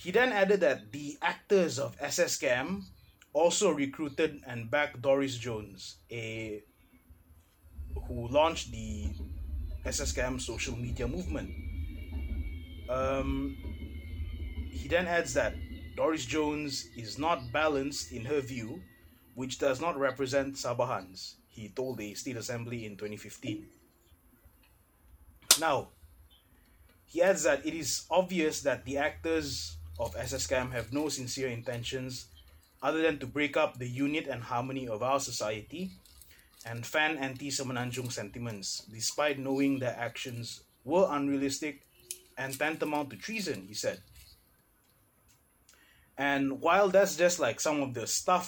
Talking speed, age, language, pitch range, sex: 125 wpm, 20-39, English, 95-140 Hz, male